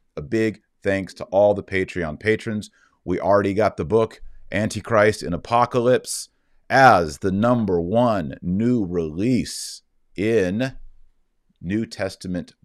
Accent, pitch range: American, 85-110 Hz